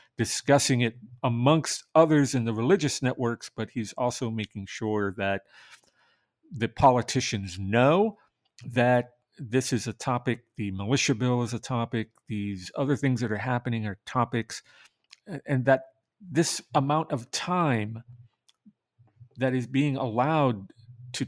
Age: 50-69